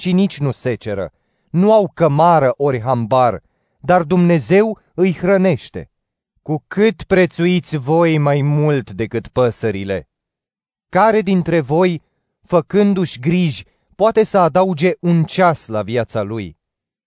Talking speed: 120 wpm